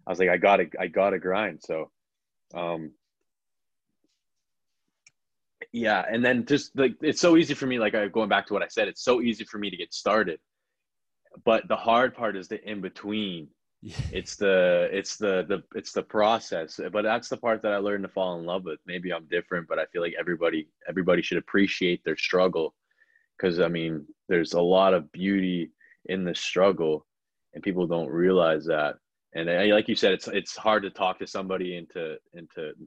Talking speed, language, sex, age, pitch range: 205 wpm, English, male, 20-39, 80-110 Hz